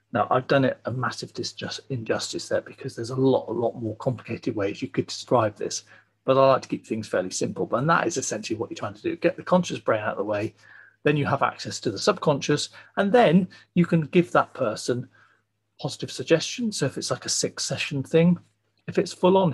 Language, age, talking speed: English, 40-59, 225 wpm